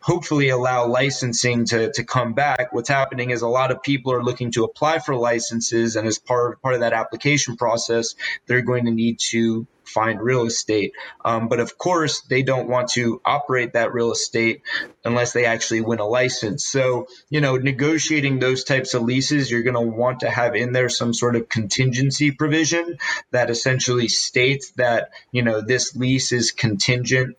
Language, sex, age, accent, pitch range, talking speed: English, male, 30-49, American, 115-130 Hz, 185 wpm